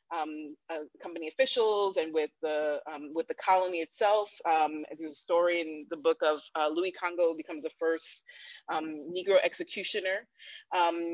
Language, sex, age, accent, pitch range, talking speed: English, female, 20-39, American, 160-200 Hz, 160 wpm